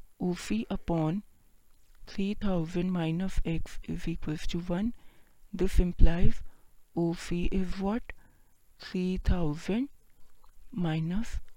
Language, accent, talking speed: Hindi, native, 95 wpm